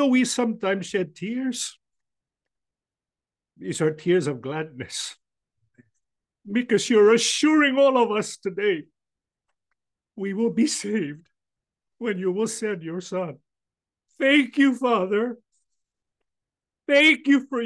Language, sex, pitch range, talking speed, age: English, male, 200-285 Hz, 110 wpm, 50-69